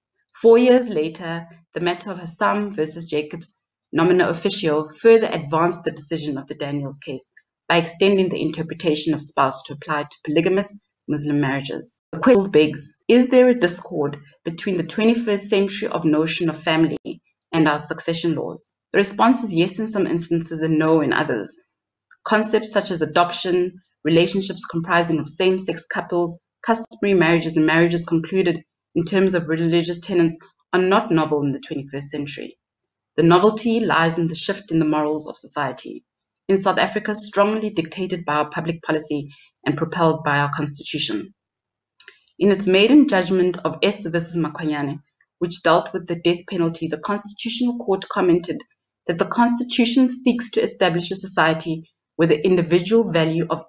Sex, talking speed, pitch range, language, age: female, 160 wpm, 155-195 Hz, English, 30-49